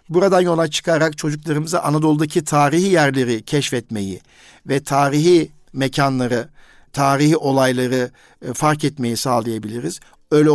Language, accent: Turkish, native